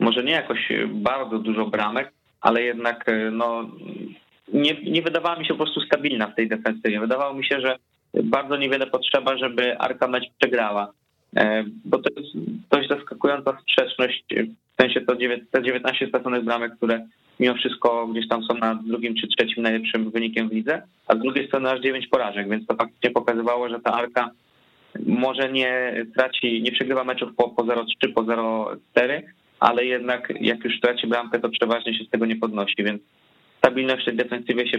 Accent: native